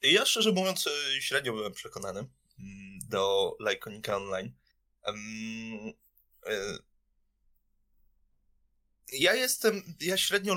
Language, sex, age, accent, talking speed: Polish, male, 20-39, native, 75 wpm